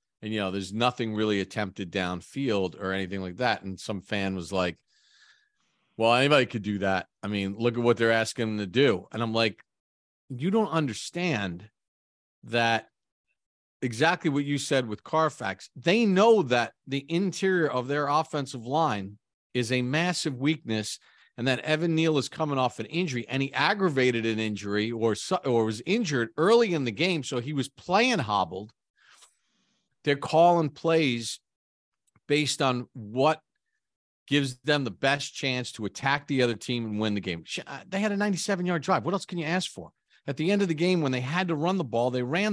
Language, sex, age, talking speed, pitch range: English, male, 40-59, 185 wpm, 110-175 Hz